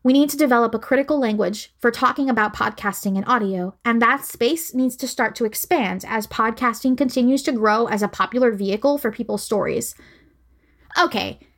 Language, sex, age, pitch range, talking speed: English, female, 20-39, 205-275 Hz, 175 wpm